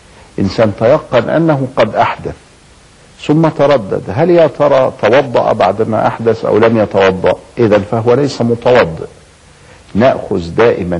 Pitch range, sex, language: 95-130 Hz, male, Arabic